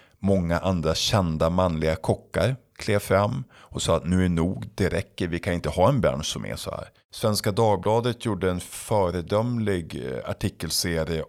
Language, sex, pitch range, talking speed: Swedish, male, 80-105 Hz, 165 wpm